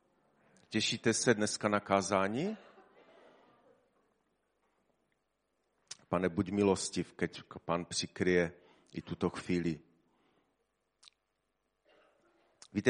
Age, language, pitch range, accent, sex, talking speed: 40-59, Czech, 90-100 Hz, native, male, 70 wpm